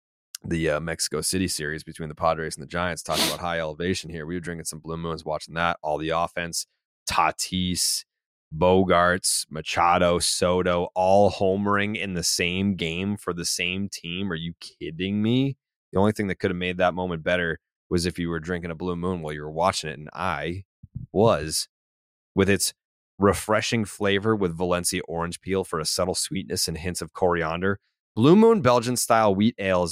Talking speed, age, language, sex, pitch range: 185 wpm, 30-49, English, male, 85-110 Hz